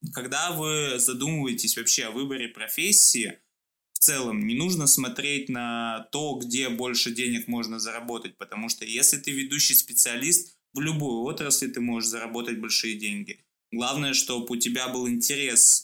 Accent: native